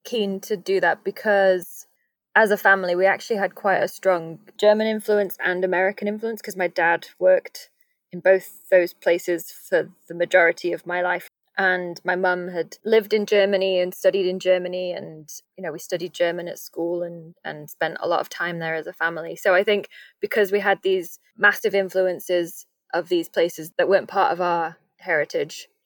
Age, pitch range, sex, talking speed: 20-39, 170-195 Hz, female, 190 wpm